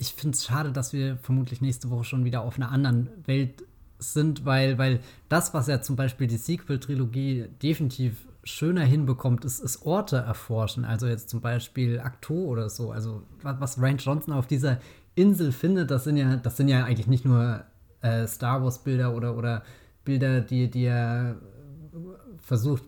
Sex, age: male, 20-39